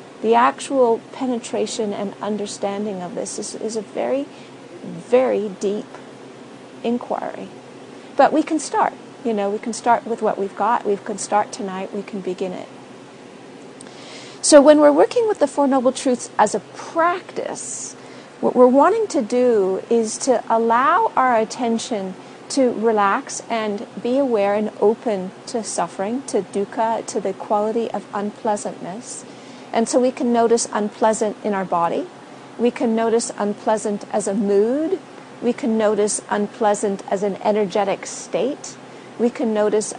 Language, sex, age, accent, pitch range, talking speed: English, female, 50-69, American, 205-250 Hz, 150 wpm